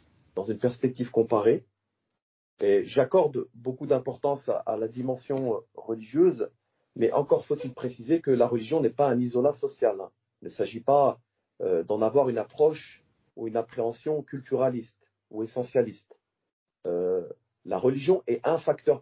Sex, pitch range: male, 125-185 Hz